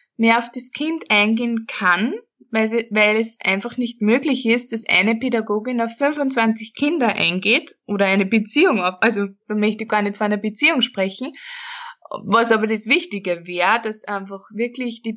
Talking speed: 175 wpm